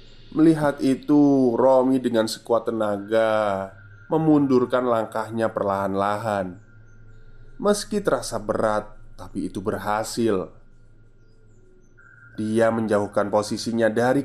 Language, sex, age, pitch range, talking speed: Indonesian, male, 20-39, 105-130 Hz, 80 wpm